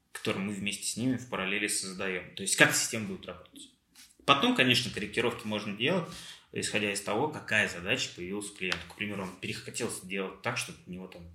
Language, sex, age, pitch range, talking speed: Russian, male, 20-39, 90-110 Hz, 195 wpm